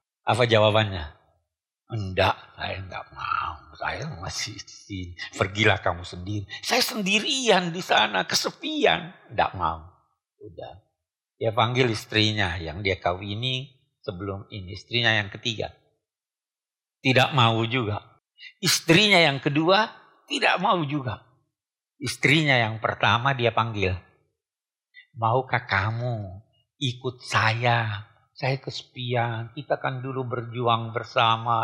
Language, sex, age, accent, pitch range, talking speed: Indonesian, male, 50-69, native, 110-140 Hz, 105 wpm